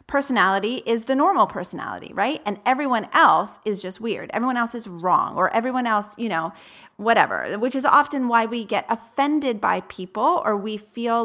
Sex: female